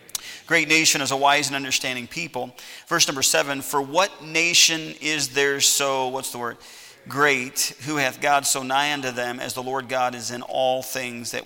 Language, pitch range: English, 125-145 Hz